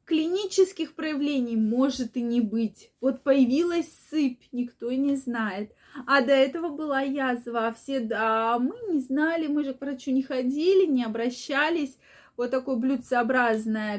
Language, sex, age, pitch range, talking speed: Russian, female, 20-39, 240-310 Hz, 145 wpm